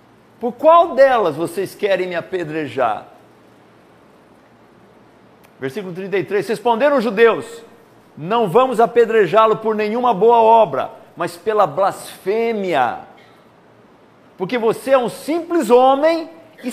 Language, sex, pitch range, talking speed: Portuguese, male, 185-260 Hz, 105 wpm